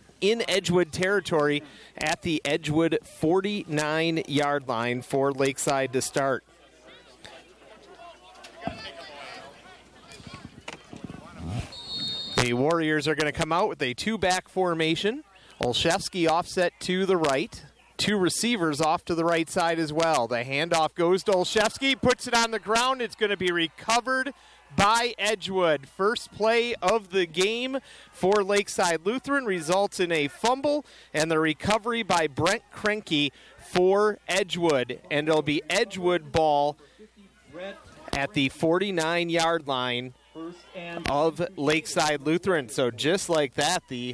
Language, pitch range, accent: English, 150-205 Hz, American